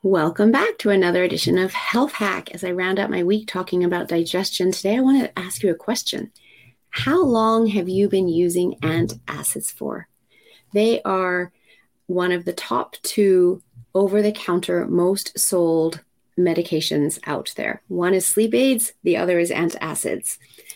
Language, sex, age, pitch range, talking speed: English, female, 30-49, 175-210 Hz, 155 wpm